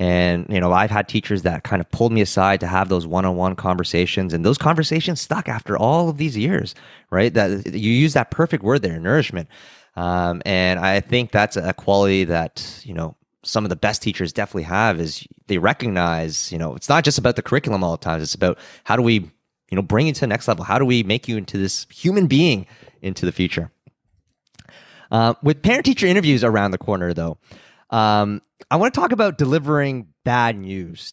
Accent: American